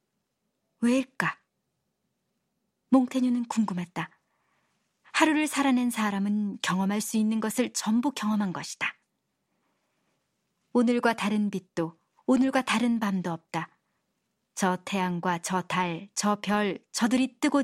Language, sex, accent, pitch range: Korean, male, native, 185-240 Hz